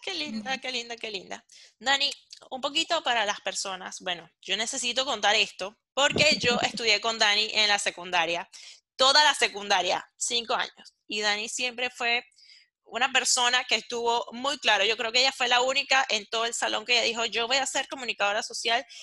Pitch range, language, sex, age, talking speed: 215-275 Hz, Spanish, female, 10-29, 190 wpm